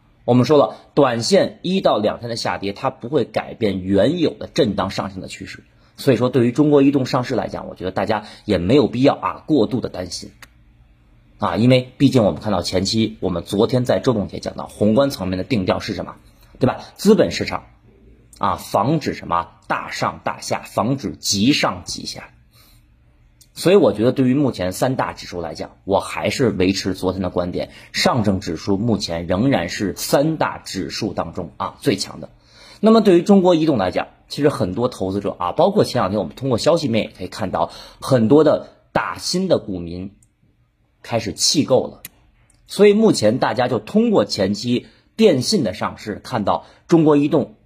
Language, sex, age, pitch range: Chinese, male, 30-49, 95-130 Hz